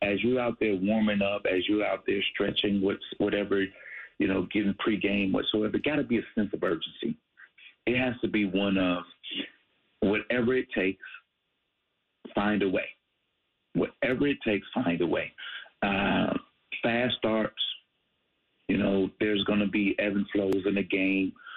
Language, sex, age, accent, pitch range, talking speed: English, male, 50-69, American, 100-120 Hz, 160 wpm